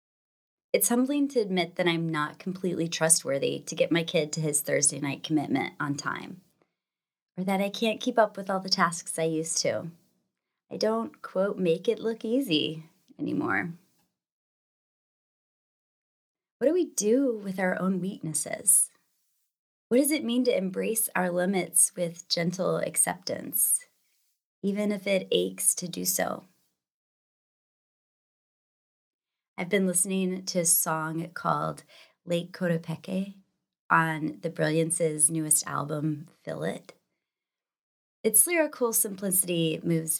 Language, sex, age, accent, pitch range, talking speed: English, female, 20-39, American, 160-200 Hz, 130 wpm